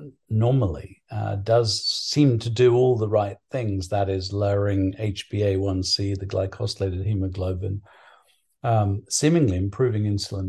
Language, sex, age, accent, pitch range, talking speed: English, male, 50-69, British, 100-125 Hz, 120 wpm